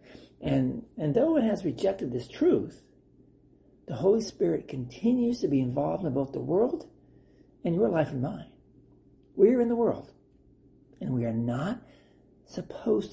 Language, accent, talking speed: English, American, 155 wpm